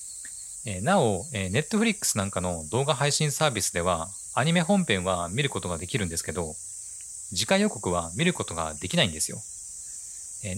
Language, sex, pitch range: Japanese, male, 90-150 Hz